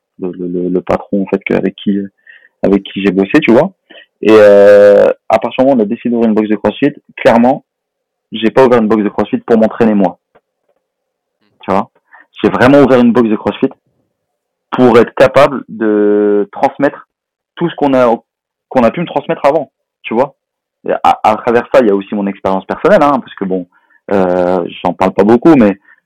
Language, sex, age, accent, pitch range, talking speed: French, male, 30-49, French, 100-115 Hz, 205 wpm